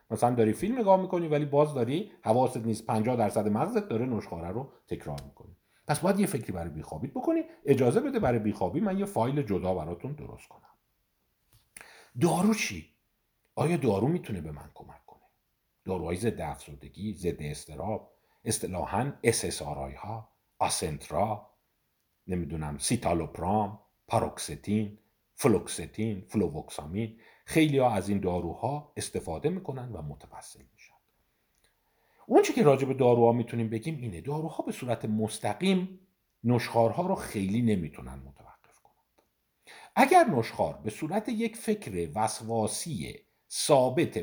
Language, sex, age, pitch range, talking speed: Persian, male, 50-69, 100-145 Hz, 130 wpm